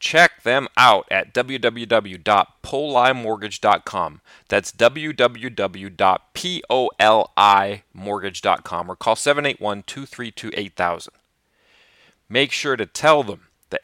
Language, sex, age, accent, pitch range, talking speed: English, male, 40-59, American, 100-125 Hz, 70 wpm